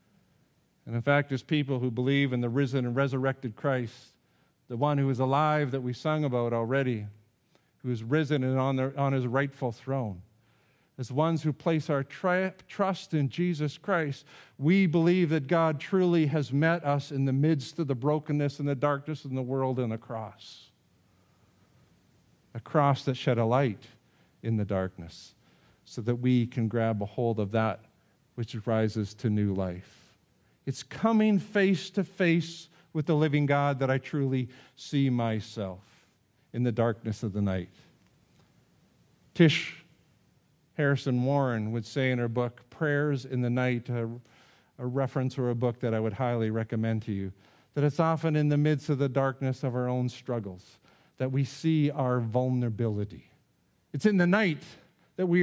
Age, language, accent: 50-69, English, American